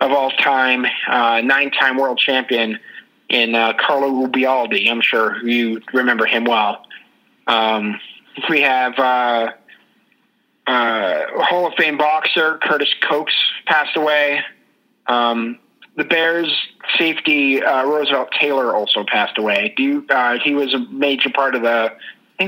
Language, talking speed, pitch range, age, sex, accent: English, 140 wpm, 120-150 Hz, 30-49, male, American